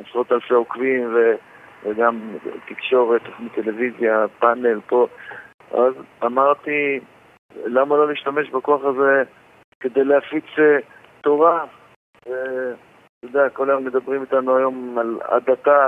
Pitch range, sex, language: 120-135 Hz, male, Hebrew